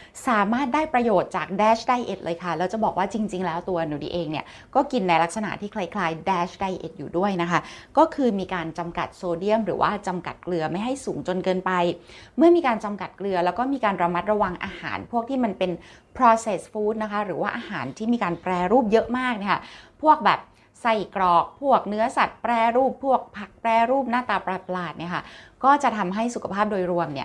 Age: 20-39